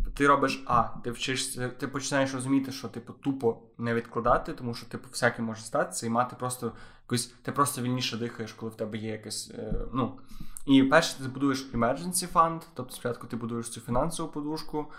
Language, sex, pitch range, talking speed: Ukrainian, male, 115-130 Hz, 190 wpm